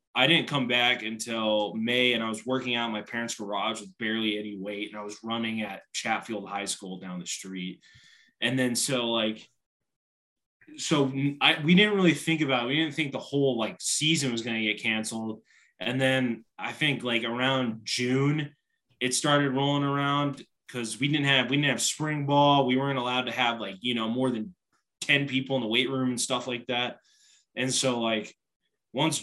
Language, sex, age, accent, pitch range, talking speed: English, male, 20-39, American, 110-140 Hz, 200 wpm